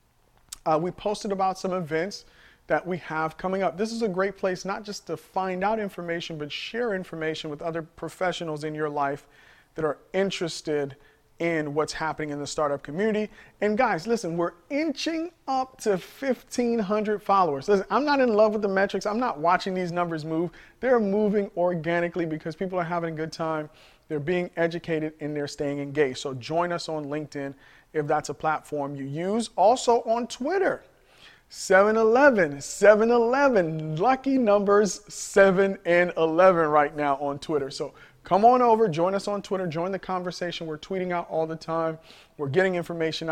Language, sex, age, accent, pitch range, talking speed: English, male, 40-59, American, 155-205 Hz, 175 wpm